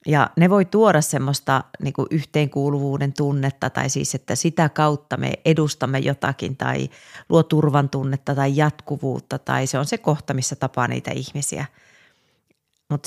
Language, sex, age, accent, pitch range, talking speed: Finnish, female, 30-49, native, 135-165 Hz, 140 wpm